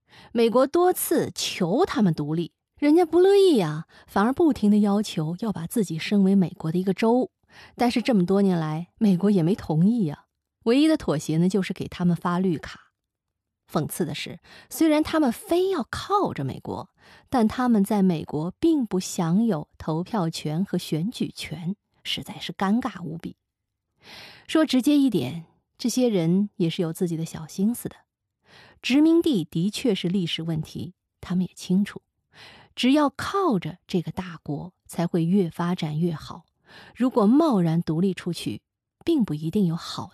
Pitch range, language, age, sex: 165-230 Hz, Chinese, 20-39, female